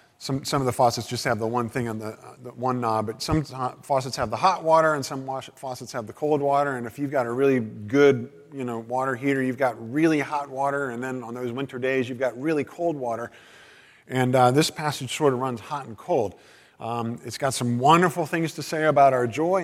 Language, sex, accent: English, male, American